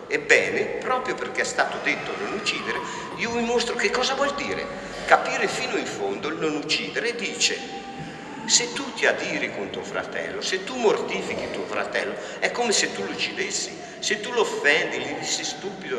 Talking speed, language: 180 wpm, Italian